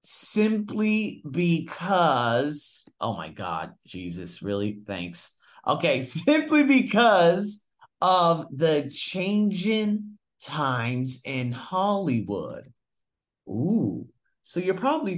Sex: male